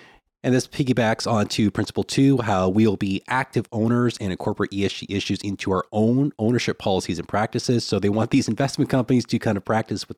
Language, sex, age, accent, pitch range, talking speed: English, male, 30-49, American, 95-120 Hz, 200 wpm